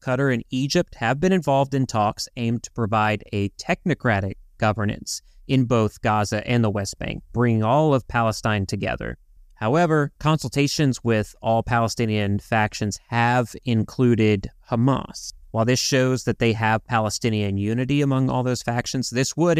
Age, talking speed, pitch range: 30-49, 150 wpm, 105-130 Hz